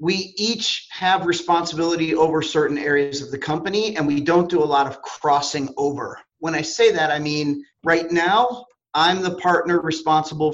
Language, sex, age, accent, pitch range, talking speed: English, male, 40-59, American, 150-175 Hz, 175 wpm